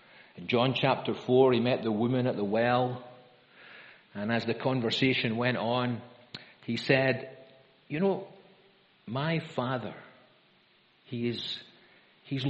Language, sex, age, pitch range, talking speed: English, male, 50-69, 120-160 Hz, 120 wpm